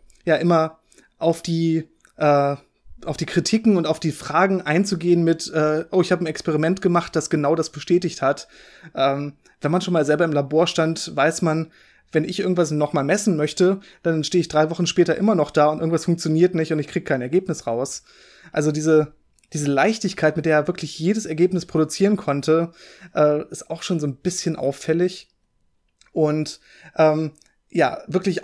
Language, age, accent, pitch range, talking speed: German, 20-39, German, 155-180 Hz, 180 wpm